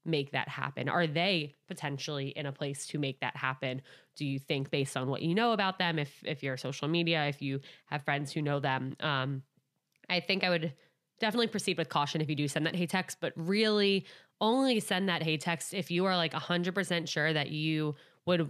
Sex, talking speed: female, 215 wpm